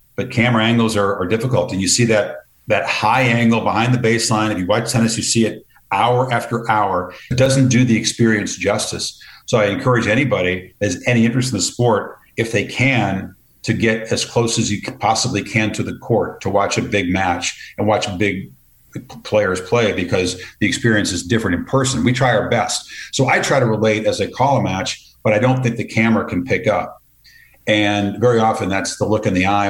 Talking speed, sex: 215 wpm, male